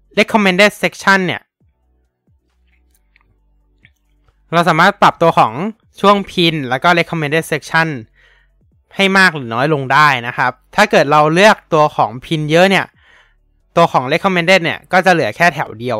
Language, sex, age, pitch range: Thai, male, 20-39, 125-180 Hz